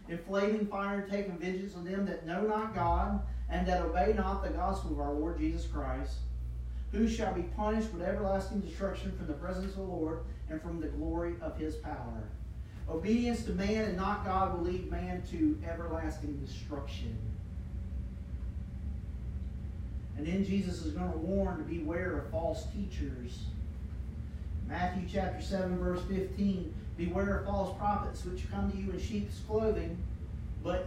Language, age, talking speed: English, 40-59, 160 wpm